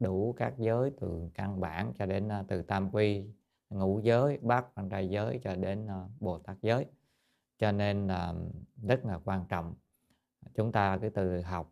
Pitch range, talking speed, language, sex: 90-110 Hz, 170 wpm, Vietnamese, male